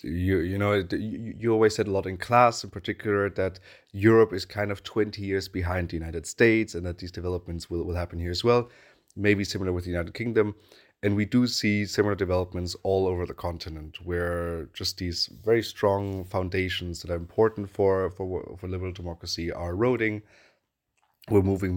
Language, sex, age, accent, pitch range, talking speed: English, male, 30-49, German, 90-110 Hz, 185 wpm